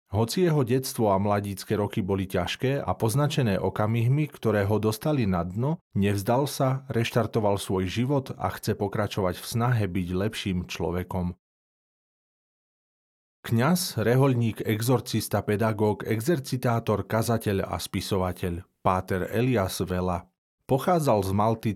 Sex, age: male, 40-59